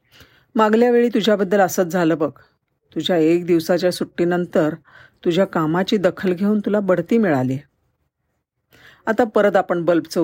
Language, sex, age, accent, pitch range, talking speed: Marathi, female, 50-69, native, 155-210 Hz, 125 wpm